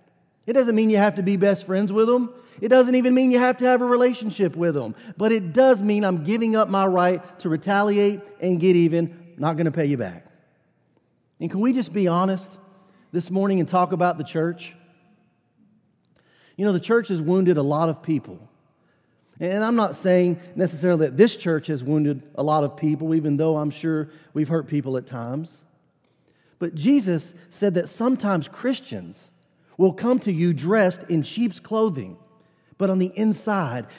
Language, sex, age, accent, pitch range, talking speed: English, male, 40-59, American, 155-200 Hz, 190 wpm